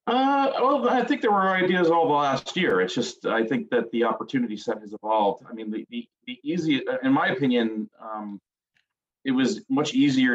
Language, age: English, 30-49